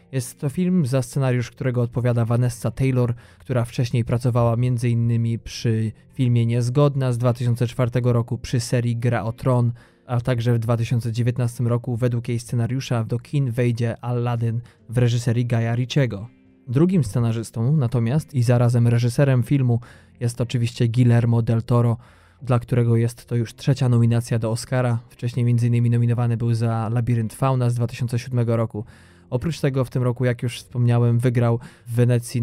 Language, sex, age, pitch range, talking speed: Polish, male, 20-39, 115-125 Hz, 150 wpm